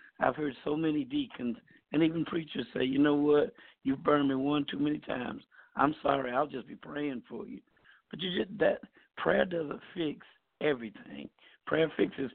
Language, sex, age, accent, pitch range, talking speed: English, male, 60-79, American, 135-160 Hz, 180 wpm